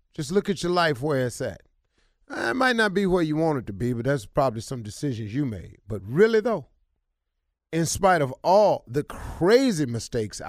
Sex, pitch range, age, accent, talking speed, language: male, 105-160 Hz, 40-59, American, 200 wpm, English